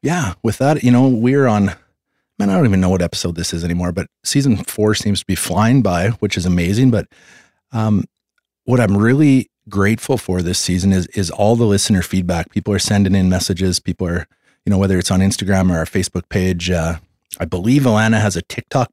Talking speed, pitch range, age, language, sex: 210 wpm, 95-110 Hz, 30-49, English, male